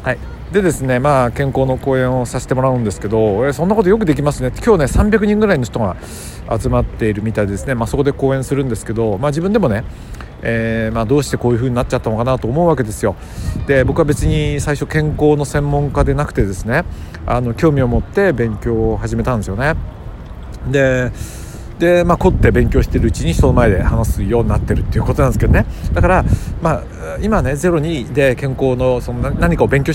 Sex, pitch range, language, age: male, 110-145 Hz, Japanese, 50-69